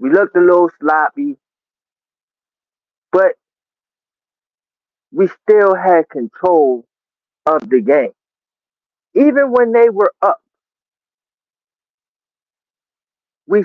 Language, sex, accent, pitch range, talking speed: English, male, American, 185-295 Hz, 85 wpm